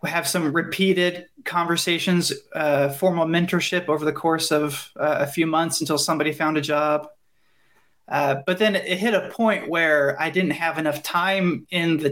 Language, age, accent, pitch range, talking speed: English, 30-49, American, 150-185 Hz, 175 wpm